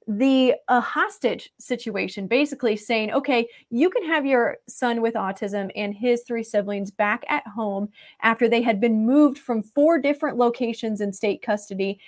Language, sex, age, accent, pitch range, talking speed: English, female, 20-39, American, 205-245 Hz, 160 wpm